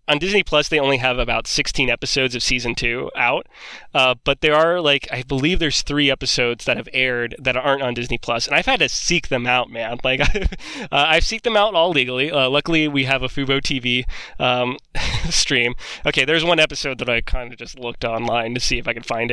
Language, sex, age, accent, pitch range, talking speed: English, male, 20-39, American, 125-150 Hz, 225 wpm